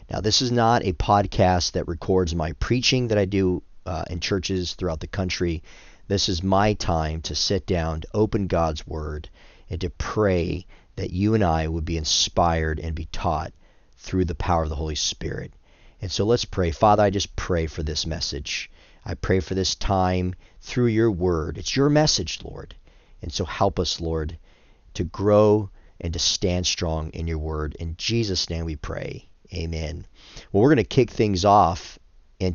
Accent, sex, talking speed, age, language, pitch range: American, male, 185 wpm, 40-59, English, 80-105 Hz